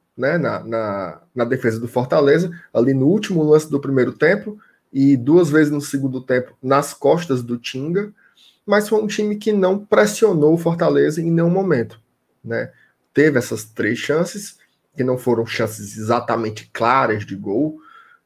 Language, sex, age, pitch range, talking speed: Portuguese, male, 20-39, 125-170 Hz, 160 wpm